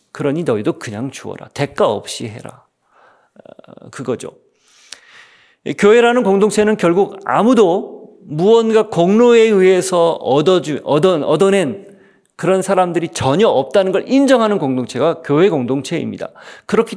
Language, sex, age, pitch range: Korean, male, 40-59, 165-220 Hz